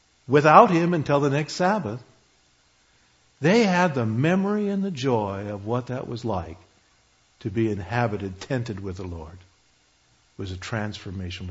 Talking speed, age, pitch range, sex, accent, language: 150 wpm, 60-79, 95-150 Hz, male, American, English